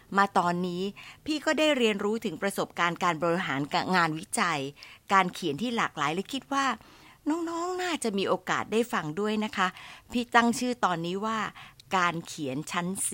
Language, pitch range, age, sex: Thai, 150-205 Hz, 60-79, female